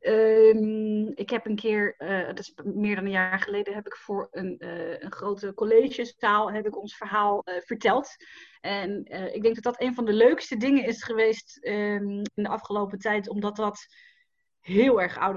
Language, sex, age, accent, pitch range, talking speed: Dutch, female, 30-49, Dutch, 205-255 Hz, 195 wpm